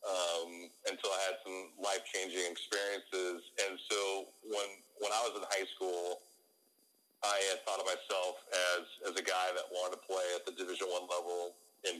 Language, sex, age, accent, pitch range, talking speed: English, male, 40-59, American, 90-100 Hz, 180 wpm